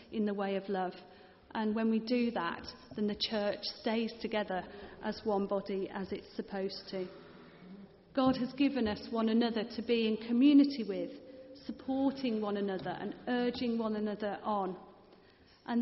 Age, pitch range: 40-59, 200-240 Hz